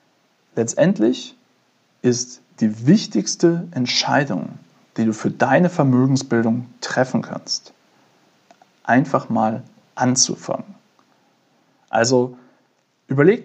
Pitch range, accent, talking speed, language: 125-170 Hz, German, 75 wpm, German